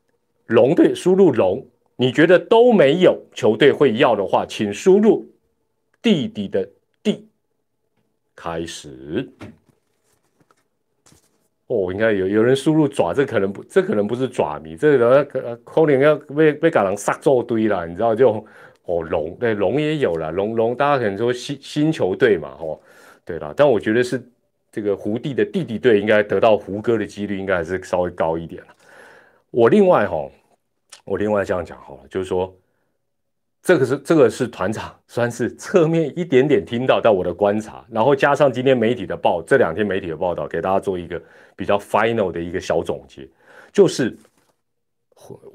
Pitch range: 100-150 Hz